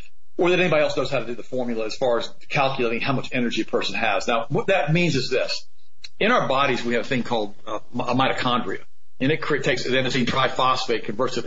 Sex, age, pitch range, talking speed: male, 50-69, 120-160 Hz, 225 wpm